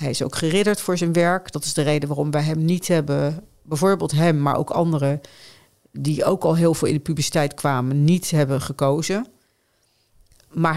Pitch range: 145-170 Hz